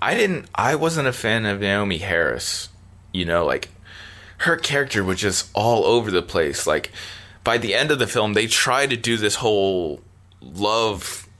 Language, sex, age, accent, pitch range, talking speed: English, male, 20-39, American, 95-115 Hz, 180 wpm